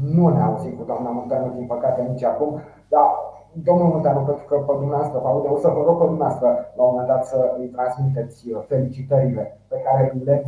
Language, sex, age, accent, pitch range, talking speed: Romanian, male, 30-49, native, 125-155 Hz, 190 wpm